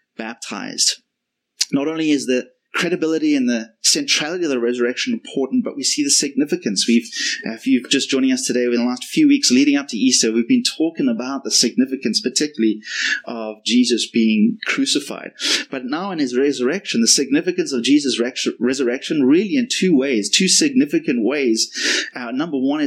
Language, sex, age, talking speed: English, male, 30-49, 175 wpm